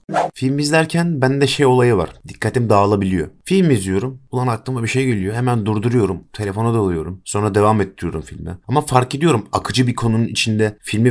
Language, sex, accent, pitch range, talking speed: Turkish, male, native, 95-135 Hz, 165 wpm